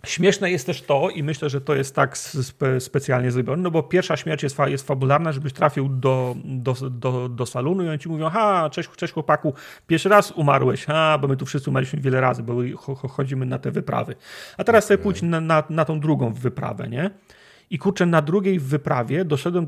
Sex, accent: male, native